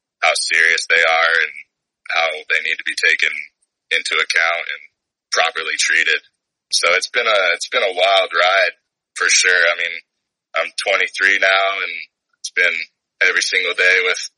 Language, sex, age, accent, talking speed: English, male, 20-39, American, 165 wpm